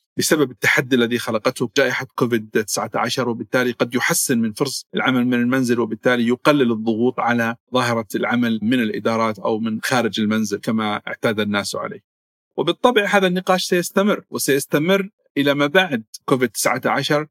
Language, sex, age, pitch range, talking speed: Arabic, male, 50-69, 120-145 Hz, 140 wpm